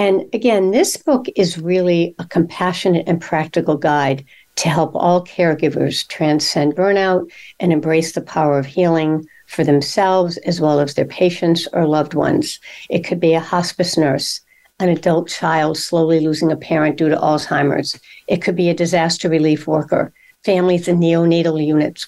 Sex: female